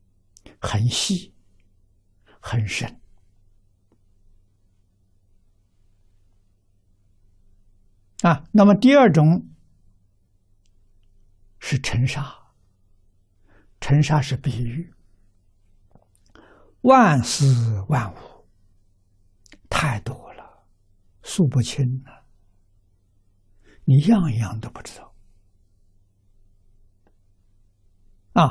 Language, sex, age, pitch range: Chinese, male, 60-79, 95-135 Hz